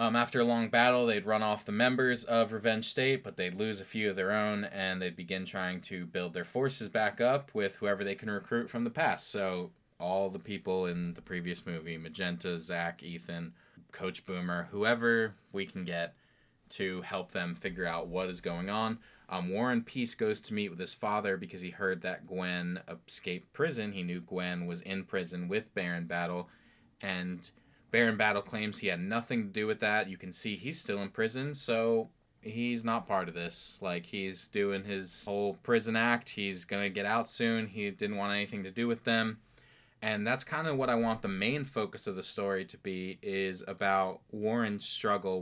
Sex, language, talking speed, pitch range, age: male, English, 205 wpm, 90-115 Hz, 20-39